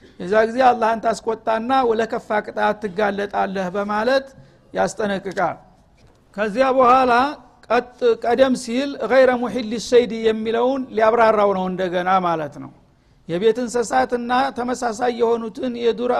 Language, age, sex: Amharic, 60-79, male